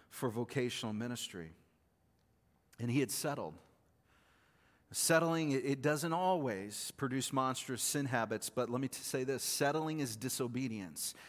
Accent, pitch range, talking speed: American, 120-140 Hz, 120 wpm